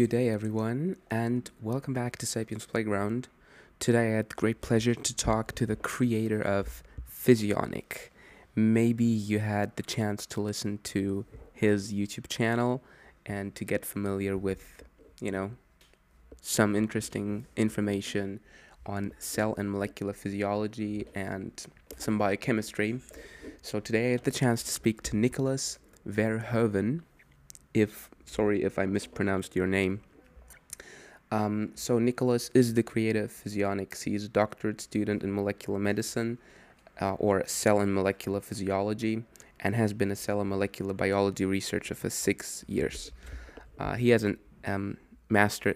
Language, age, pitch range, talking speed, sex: English, 20-39, 100-115 Hz, 140 wpm, male